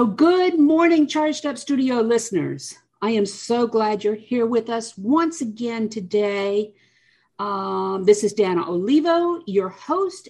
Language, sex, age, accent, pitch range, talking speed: English, female, 50-69, American, 200-280 Hz, 145 wpm